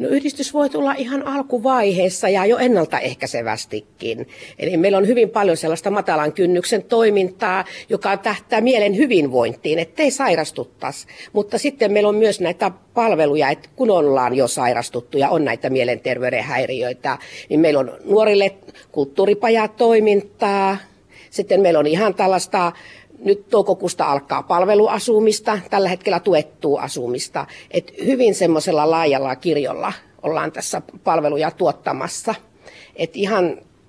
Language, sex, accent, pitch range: Finnish, female, native, 165-220 Hz